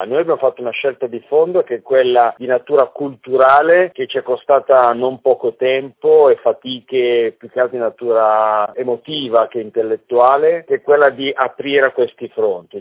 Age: 50-69